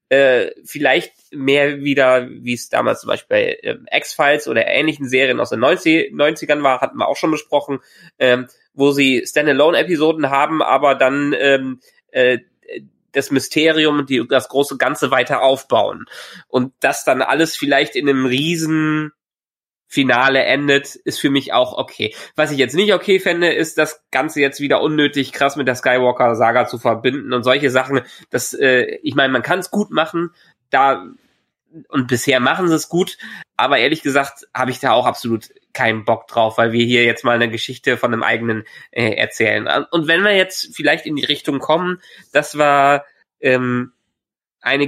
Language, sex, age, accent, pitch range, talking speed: German, male, 20-39, German, 130-165 Hz, 170 wpm